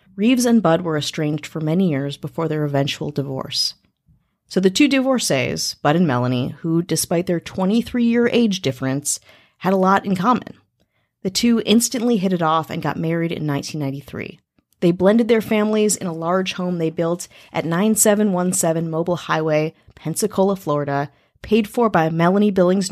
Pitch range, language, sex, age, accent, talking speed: 155-200 Hz, English, female, 30-49, American, 160 wpm